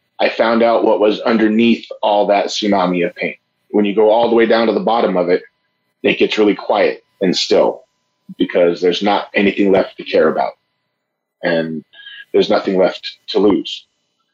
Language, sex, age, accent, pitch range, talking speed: English, male, 30-49, American, 105-125 Hz, 180 wpm